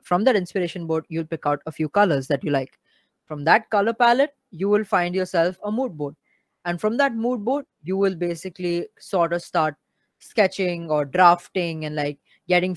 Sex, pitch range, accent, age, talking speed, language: female, 160-195 Hz, Indian, 20-39, 195 wpm, English